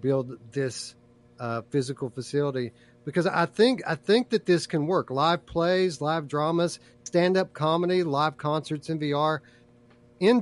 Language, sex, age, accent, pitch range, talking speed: English, male, 40-59, American, 120-160 Hz, 145 wpm